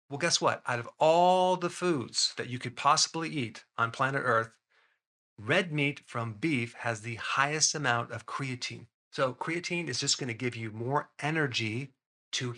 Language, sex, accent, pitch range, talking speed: English, male, American, 115-145 Hz, 175 wpm